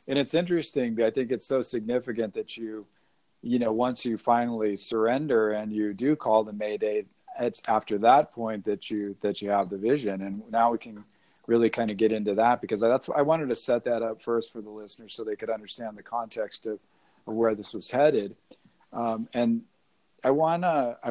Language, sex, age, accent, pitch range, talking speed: English, male, 40-59, American, 110-135 Hz, 210 wpm